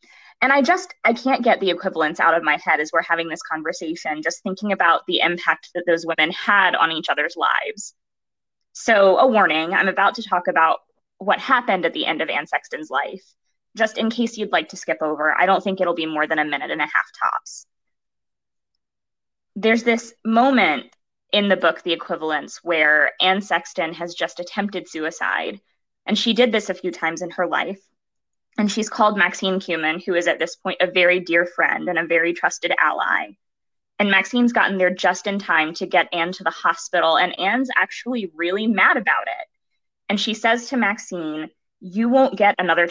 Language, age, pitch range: English, 20-39, 170-225 Hz